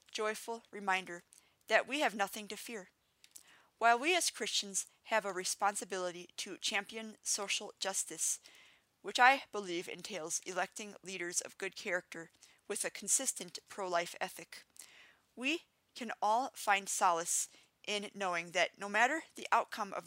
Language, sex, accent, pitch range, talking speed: English, female, American, 180-225 Hz, 140 wpm